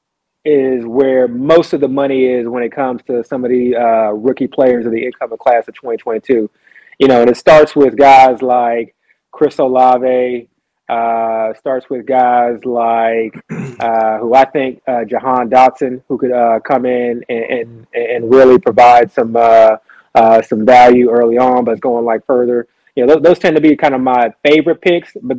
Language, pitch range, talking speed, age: English, 115-135 Hz, 185 wpm, 30-49